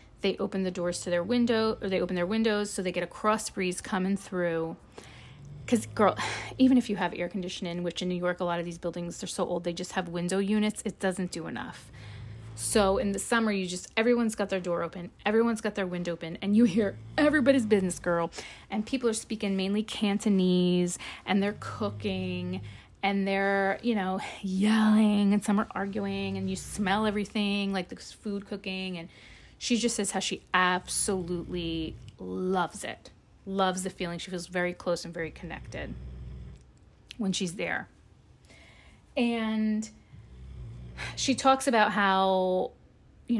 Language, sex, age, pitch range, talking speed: English, female, 30-49, 175-215 Hz, 175 wpm